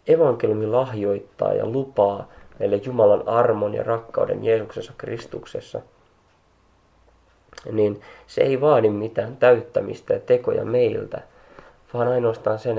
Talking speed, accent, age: 110 wpm, native, 20-39